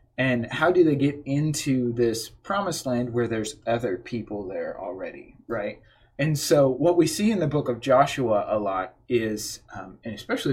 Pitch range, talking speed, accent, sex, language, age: 115-145 Hz, 180 wpm, American, male, English, 20-39